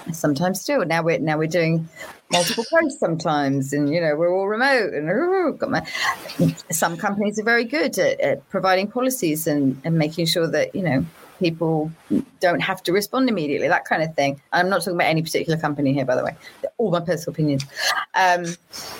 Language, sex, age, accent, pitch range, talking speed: English, female, 30-49, British, 165-225 Hz, 195 wpm